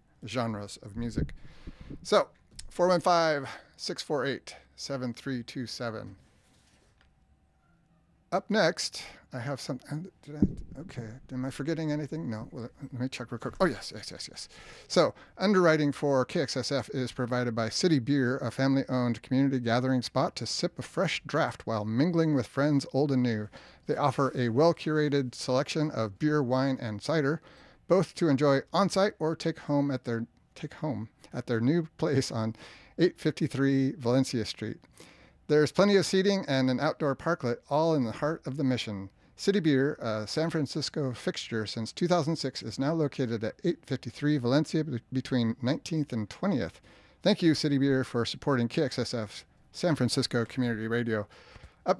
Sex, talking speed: male, 145 wpm